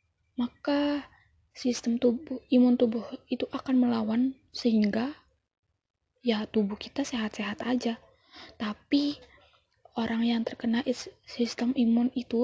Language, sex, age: Indonesian, female, 10-29